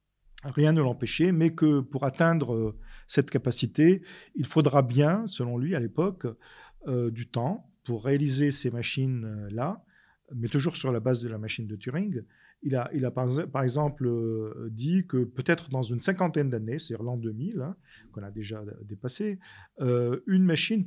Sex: male